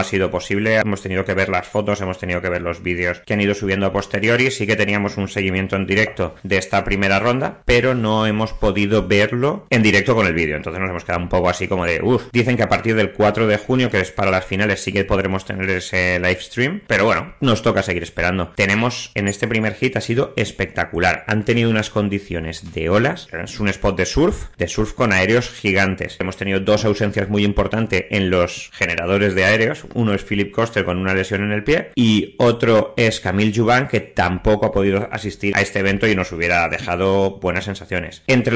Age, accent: 30-49, Spanish